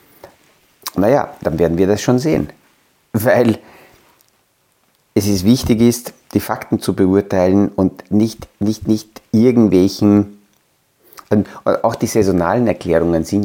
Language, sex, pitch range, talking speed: German, male, 95-115 Hz, 110 wpm